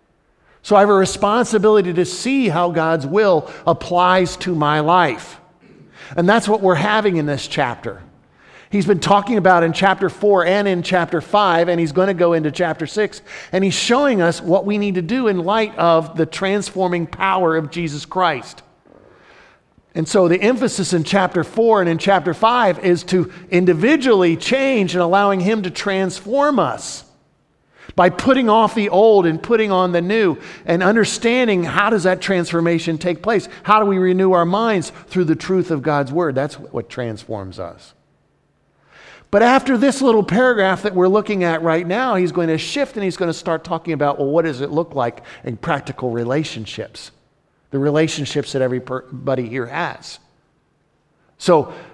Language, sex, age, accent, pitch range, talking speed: English, male, 50-69, American, 160-200 Hz, 175 wpm